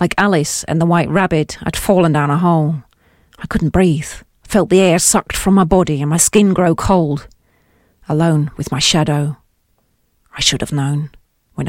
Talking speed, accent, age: 180 wpm, British, 40-59